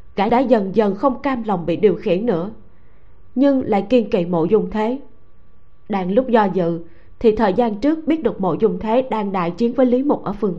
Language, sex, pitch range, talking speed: Vietnamese, female, 190-245 Hz, 220 wpm